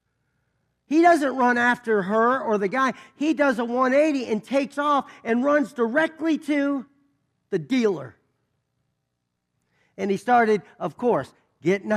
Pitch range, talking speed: 195-300 Hz, 135 wpm